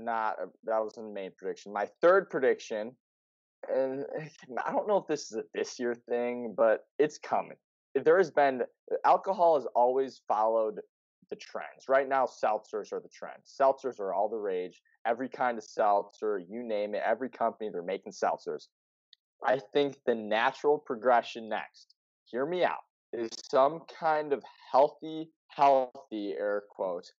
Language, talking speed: English, 160 wpm